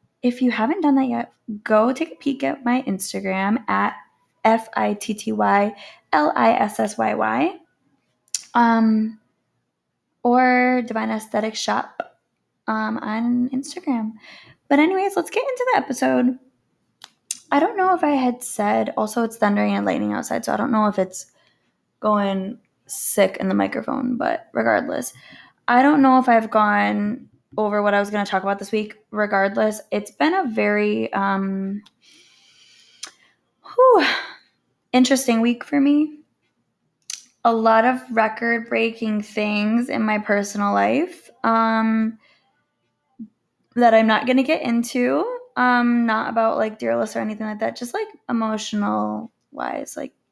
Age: 10-29